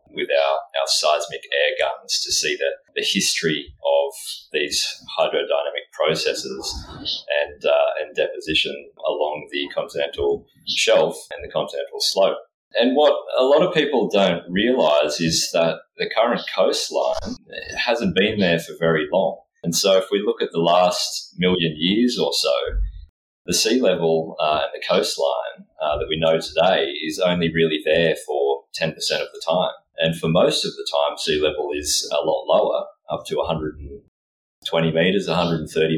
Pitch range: 75-125 Hz